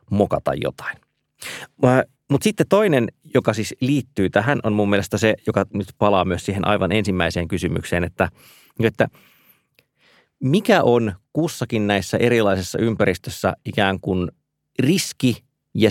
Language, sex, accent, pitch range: Finnish, male, native, 95-140 Hz